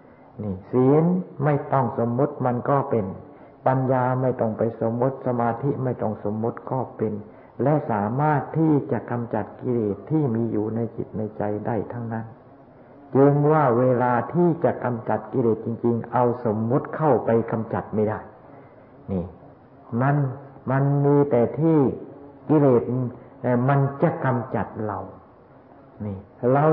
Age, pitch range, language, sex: 60-79, 110-130 Hz, Thai, male